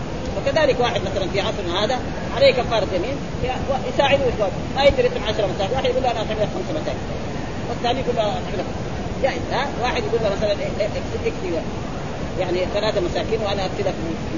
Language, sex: Arabic, female